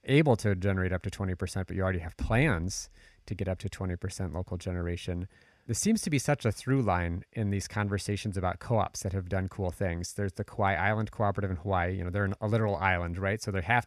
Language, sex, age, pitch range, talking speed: English, male, 30-49, 95-115 Hz, 240 wpm